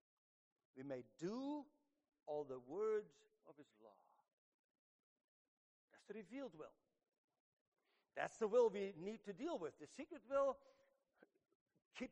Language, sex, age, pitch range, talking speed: English, male, 60-79, 155-265 Hz, 120 wpm